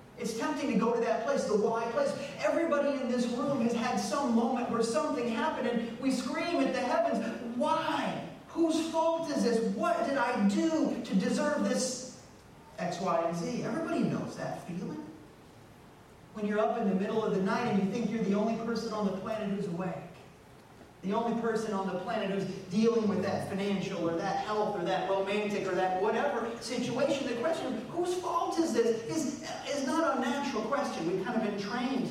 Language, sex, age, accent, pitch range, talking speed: English, male, 30-49, American, 190-250 Hz, 200 wpm